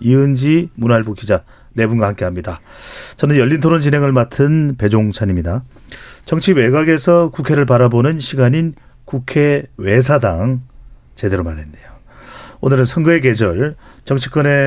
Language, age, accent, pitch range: Korean, 40-59, native, 115-155 Hz